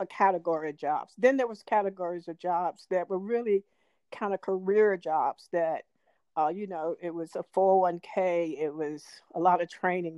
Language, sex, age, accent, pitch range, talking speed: English, female, 50-69, American, 180-215 Hz, 175 wpm